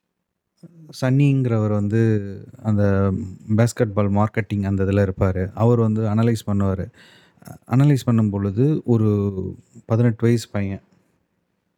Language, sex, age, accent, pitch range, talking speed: Tamil, male, 30-49, native, 100-120 Hz, 100 wpm